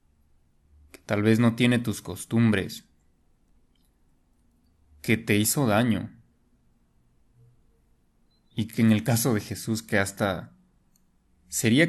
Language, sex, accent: Spanish, male, Mexican